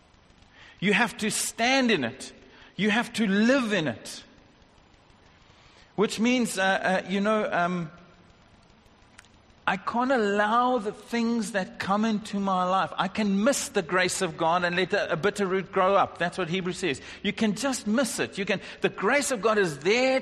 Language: English